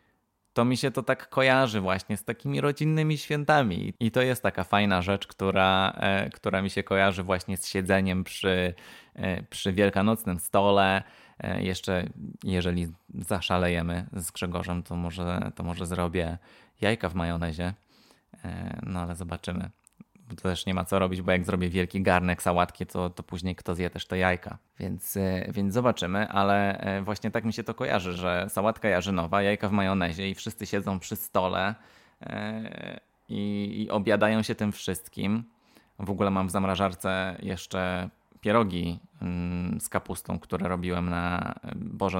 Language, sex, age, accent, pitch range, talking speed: Polish, male, 20-39, native, 90-105 Hz, 150 wpm